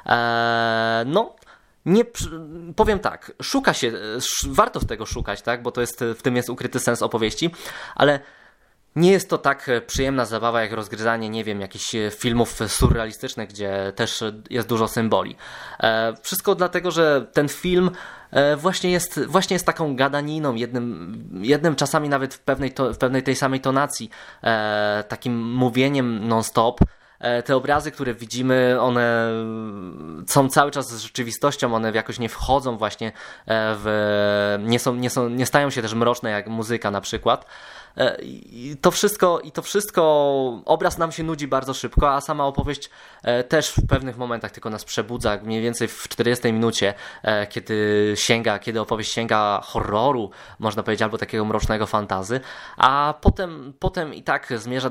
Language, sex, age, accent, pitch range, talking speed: Polish, male, 20-39, native, 110-140 Hz, 155 wpm